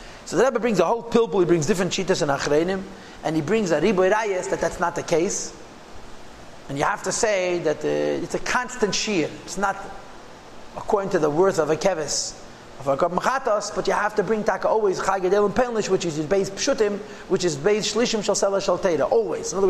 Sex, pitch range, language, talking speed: male, 175-215 Hz, English, 215 wpm